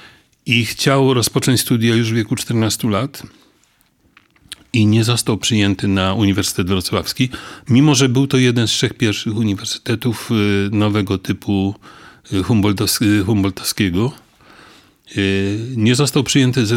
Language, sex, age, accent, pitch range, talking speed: Polish, male, 40-59, native, 100-125 Hz, 115 wpm